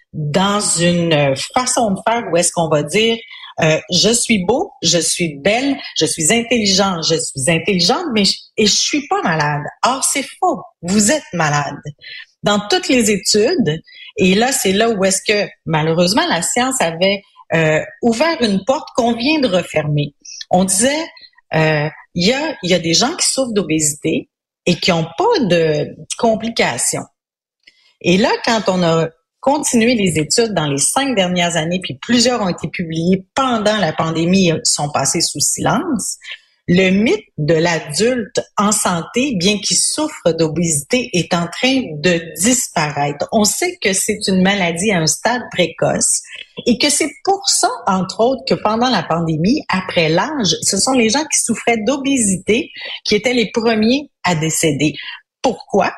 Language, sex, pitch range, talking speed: French, female, 165-245 Hz, 170 wpm